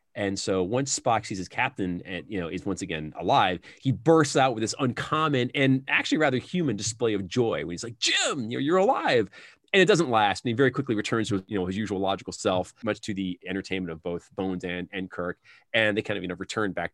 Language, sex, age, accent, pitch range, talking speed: English, male, 30-49, American, 95-125 Hz, 240 wpm